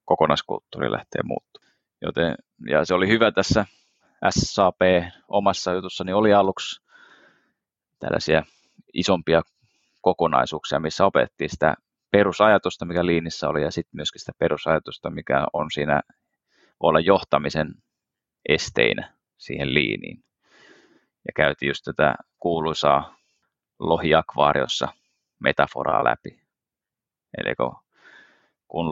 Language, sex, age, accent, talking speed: English, male, 30-49, Finnish, 100 wpm